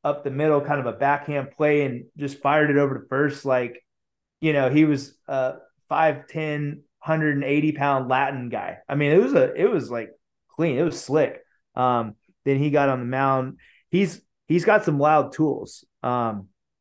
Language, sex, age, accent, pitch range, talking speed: English, male, 20-39, American, 125-150 Hz, 185 wpm